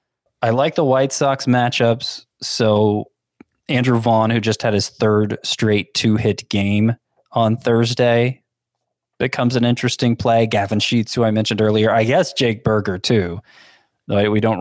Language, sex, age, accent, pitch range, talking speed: English, male, 20-39, American, 105-120 Hz, 150 wpm